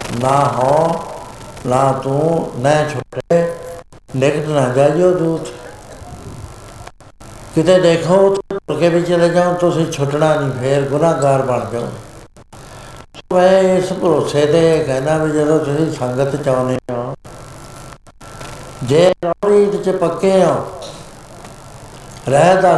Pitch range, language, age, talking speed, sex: 130-165 Hz, Punjabi, 70-89, 105 wpm, male